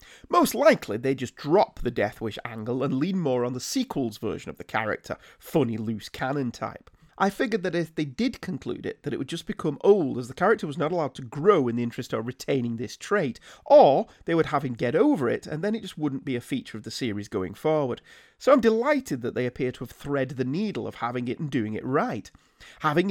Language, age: English, 30-49